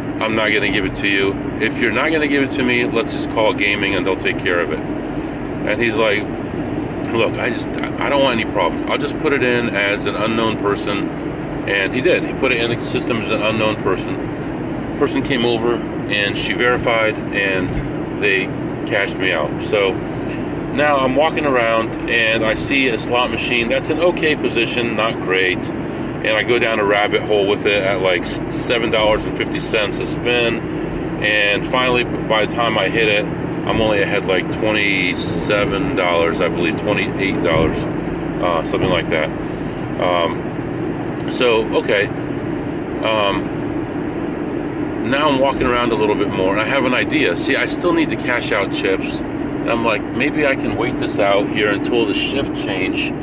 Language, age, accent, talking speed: English, 40-59, American, 180 wpm